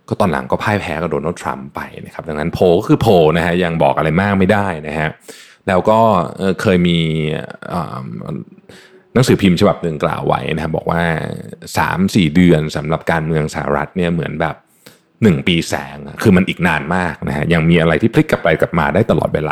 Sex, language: male, Thai